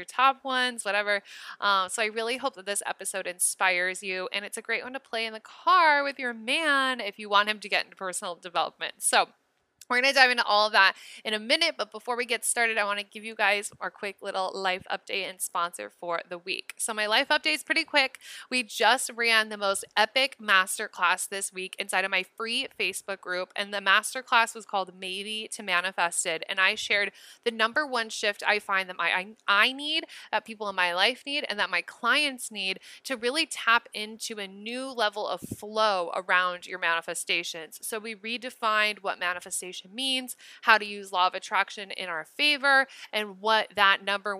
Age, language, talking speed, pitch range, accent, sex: 20-39, English, 210 wpm, 190-245 Hz, American, female